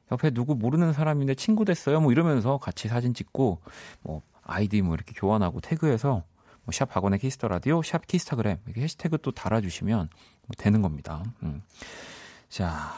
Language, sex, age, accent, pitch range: Korean, male, 40-59, native, 100-150 Hz